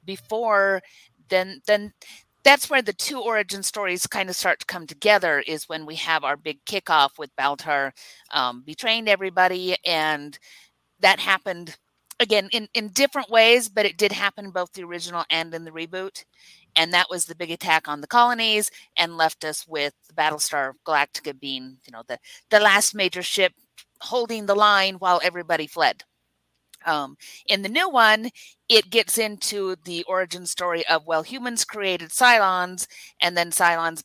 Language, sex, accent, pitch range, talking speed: English, female, American, 160-210 Hz, 165 wpm